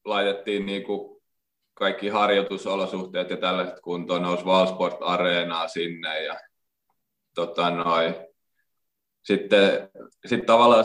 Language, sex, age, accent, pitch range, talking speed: Finnish, male, 20-39, native, 95-105 Hz, 95 wpm